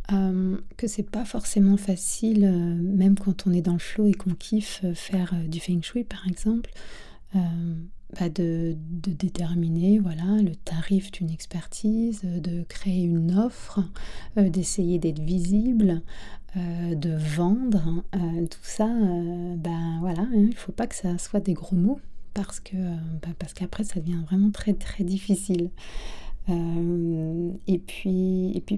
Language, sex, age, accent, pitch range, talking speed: French, female, 30-49, French, 170-195 Hz, 160 wpm